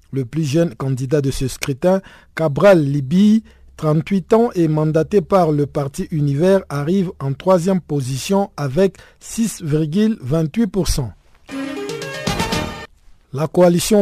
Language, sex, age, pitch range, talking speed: French, male, 50-69, 140-185 Hz, 105 wpm